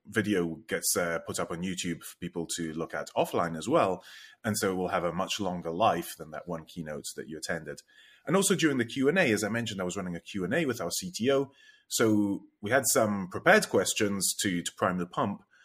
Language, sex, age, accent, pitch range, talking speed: English, male, 30-49, British, 85-120 Hz, 240 wpm